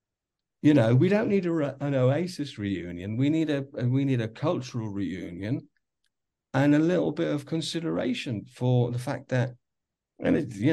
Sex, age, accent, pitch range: male, 50-69, British, 110-145 Hz